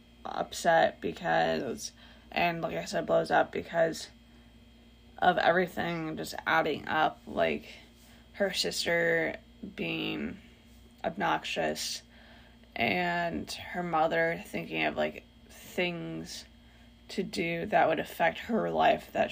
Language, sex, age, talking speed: English, female, 20-39, 105 wpm